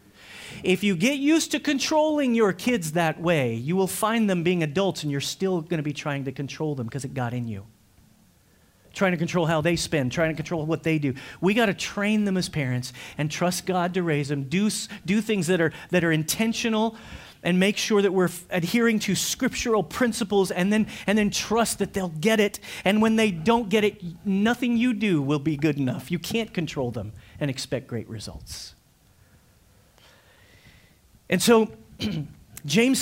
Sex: male